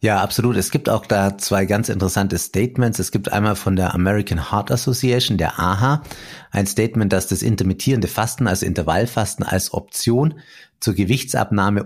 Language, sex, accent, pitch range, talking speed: German, male, German, 95-120 Hz, 160 wpm